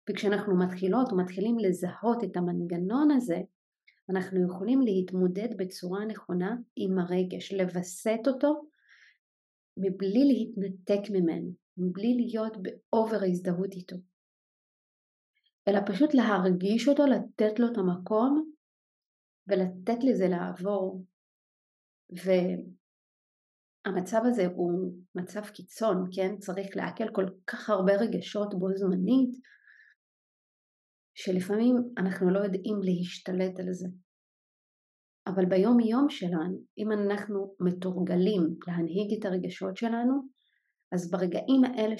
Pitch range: 185-220 Hz